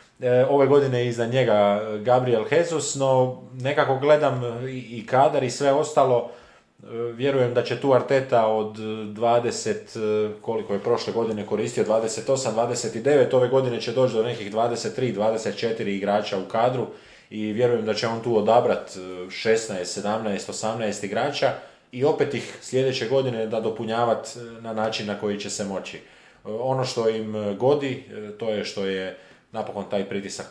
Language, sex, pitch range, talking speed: Croatian, male, 105-125 Hz, 150 wpm